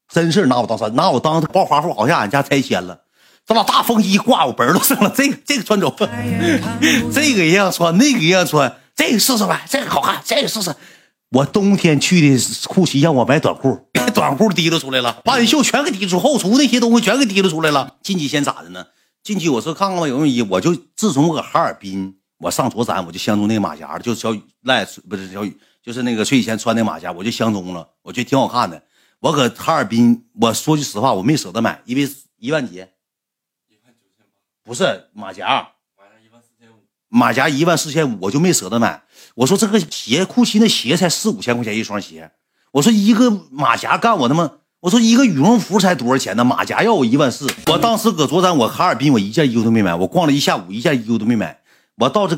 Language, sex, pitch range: Chinese, male, 115-190 Hz